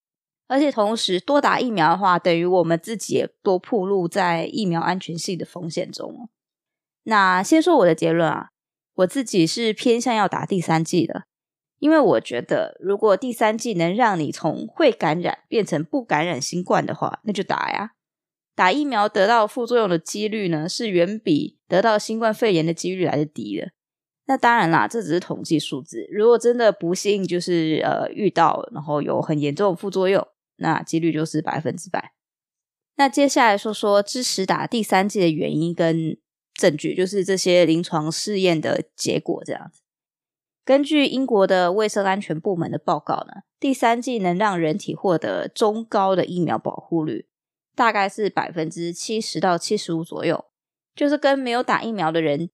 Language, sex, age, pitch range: Chinese, female, 20-39, 165-220 Hz